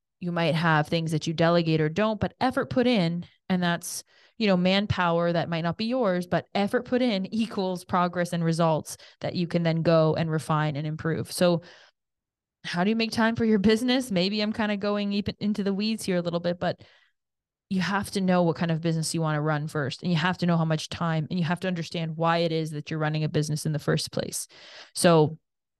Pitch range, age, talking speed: 165-195 Hz, 20-39, 235 wpm